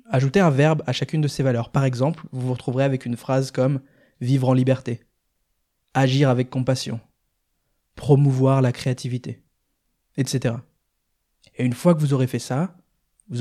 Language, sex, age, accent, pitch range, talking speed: French, male, 20-39, French, 125-145 Hz, 180 wpm